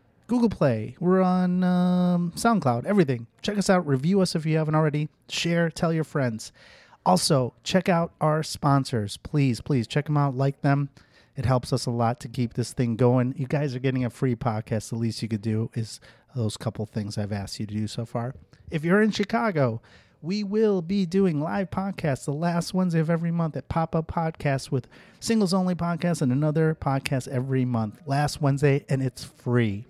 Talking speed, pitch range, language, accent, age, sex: 195 wpm, 120-155 Hz, English, American, 30-49, male